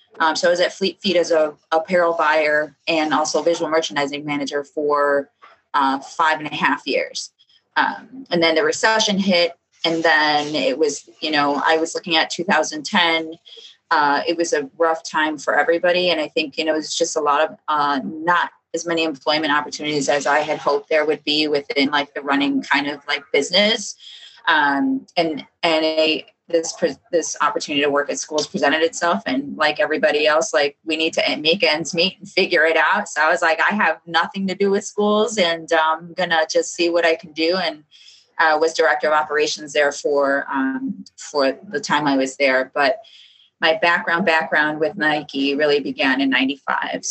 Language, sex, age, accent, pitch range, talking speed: English, female, 20-39, American, 150-175 Hz, 195 wpm